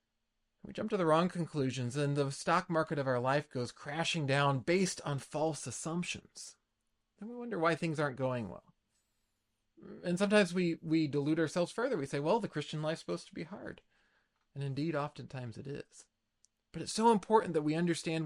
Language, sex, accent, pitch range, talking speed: English, male, American, 125-165 Hz, 185 wpm